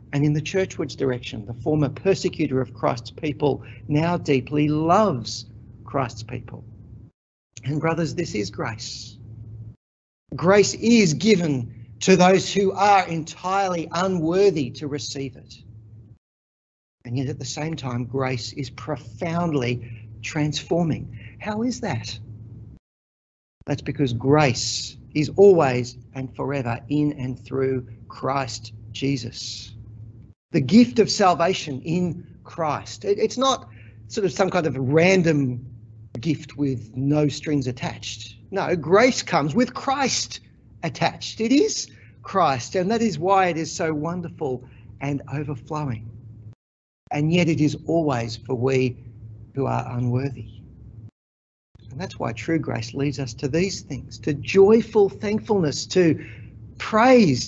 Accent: Australian